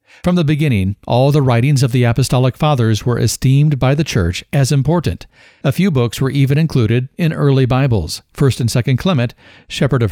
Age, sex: 60-79, male